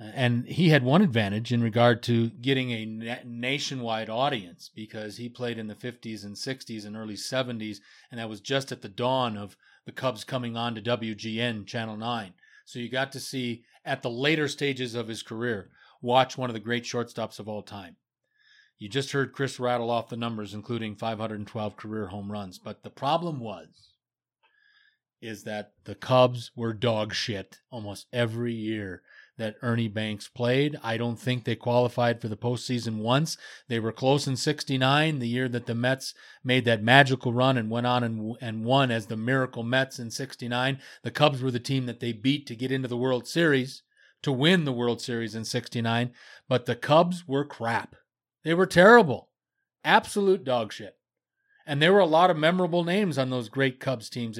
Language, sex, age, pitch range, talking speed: English, male, 30-49, 115-135 Hz, 190 wpm